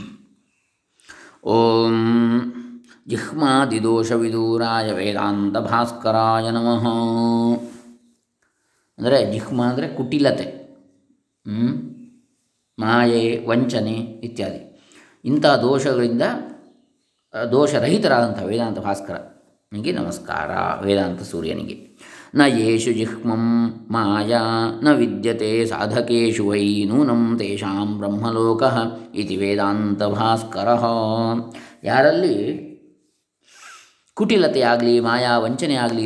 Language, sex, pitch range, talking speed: Kannada, male, 105-120 Hz, 60 wpm